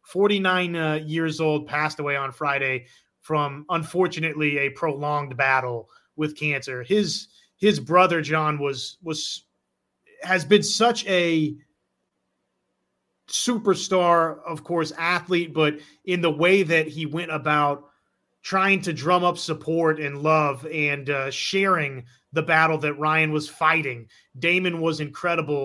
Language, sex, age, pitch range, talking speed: English, male, 30-49, 145-170 Hz, 130 wpm